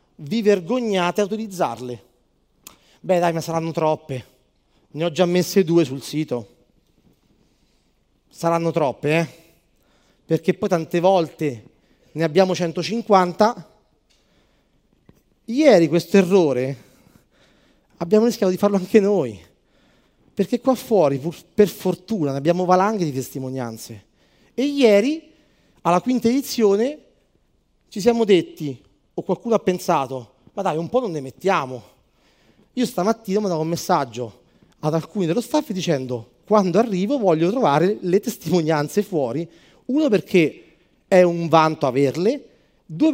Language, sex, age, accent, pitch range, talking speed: Italian, male, 30-49, native, 155-220 Hz, 125 wpm